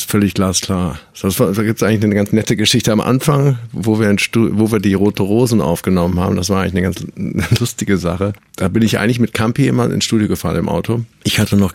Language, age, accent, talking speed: German, 50-69, German, 230 wpm